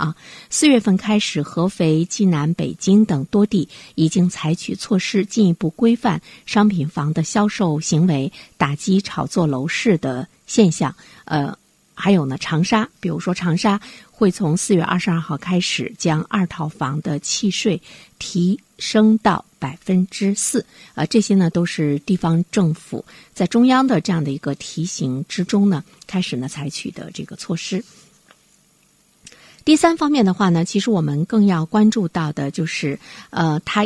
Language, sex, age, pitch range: Chinese, female, 50-69, 155-205 Hz